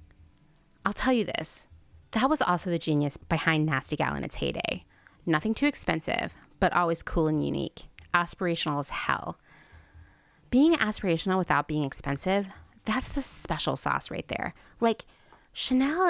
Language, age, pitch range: English, 20-39, 150-225 Hz